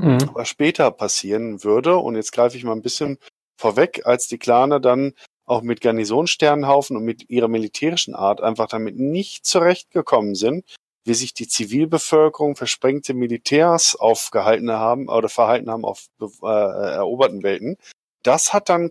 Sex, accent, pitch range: male, German, 110-135 Hz